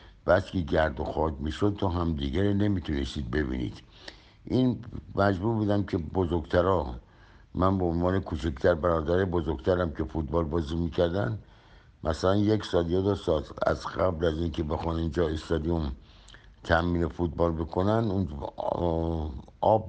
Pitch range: 85-100 Hz